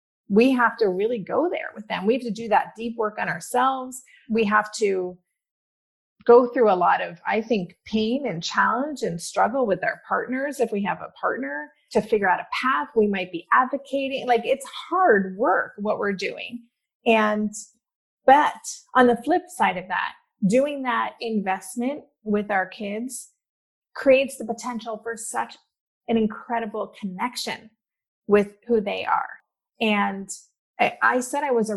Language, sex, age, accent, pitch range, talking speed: English, female, 30-49, American, 205-255 Hz, 165 wpm